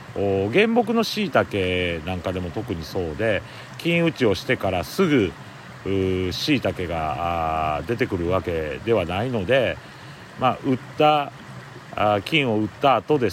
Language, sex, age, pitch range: Japanese, male, 40-59, 95-140 Hz